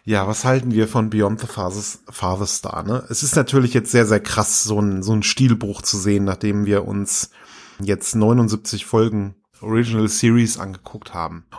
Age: 30-49